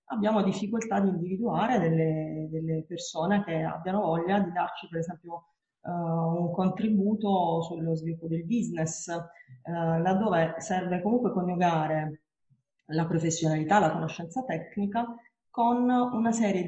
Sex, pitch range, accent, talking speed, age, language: female, 165-200 Hz, native, 115 wpm, 30-49, Italian